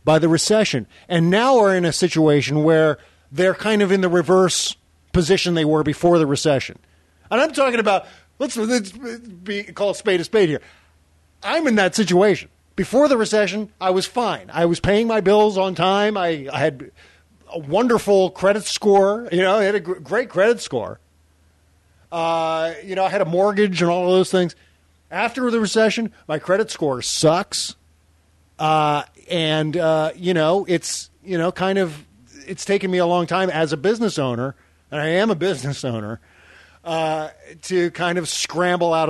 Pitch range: 140-190 Hz